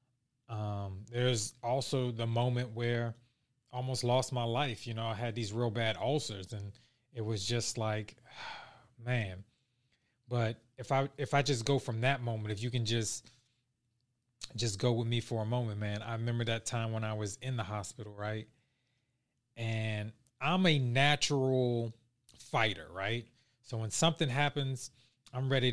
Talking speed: 165 wpm